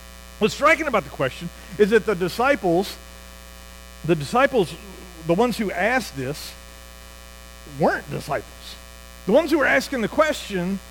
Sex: male